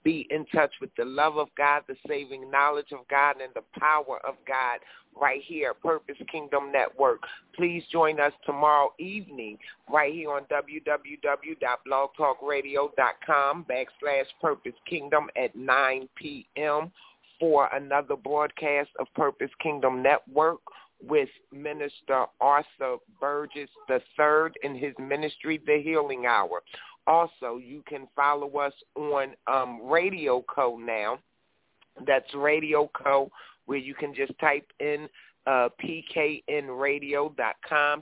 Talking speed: 125 wpm